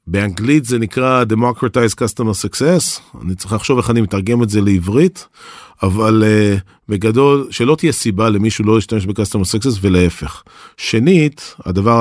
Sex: male